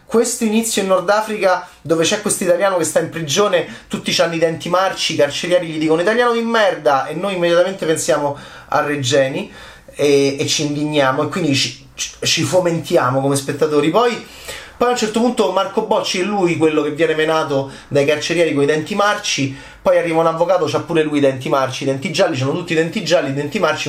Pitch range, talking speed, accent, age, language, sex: 135-180 Hz, 210 wpm, native, 30-49, Italian, male